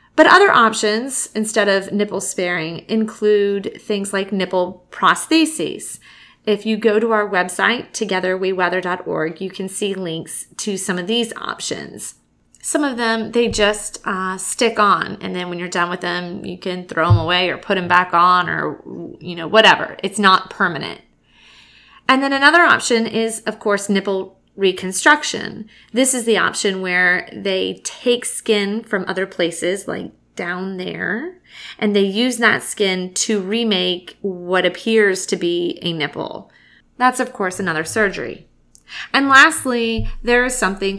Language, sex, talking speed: English, female, 155 wpm